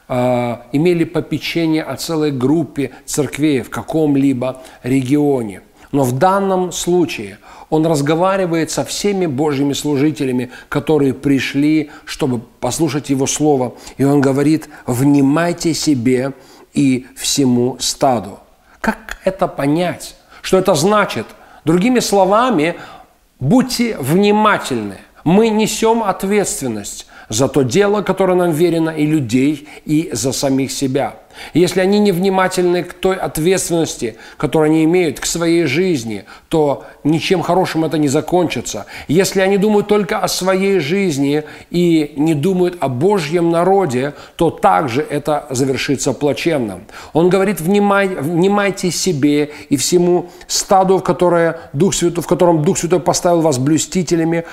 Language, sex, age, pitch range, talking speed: Russian, male, 40-59, 140-185 Hz, 125 wpm